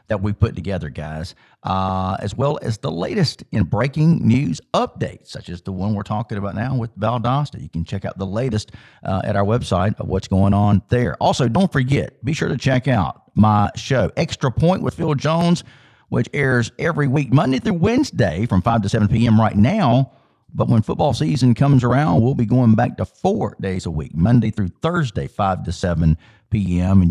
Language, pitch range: English, 100-135 Hz